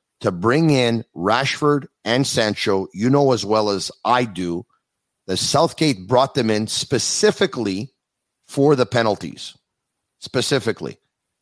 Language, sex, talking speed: English, male, 120 wpm